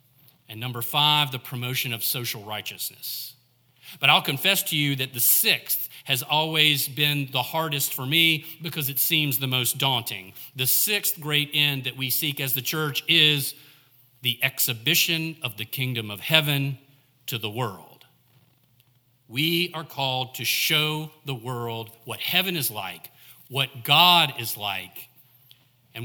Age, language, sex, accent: 40-59, English, male, American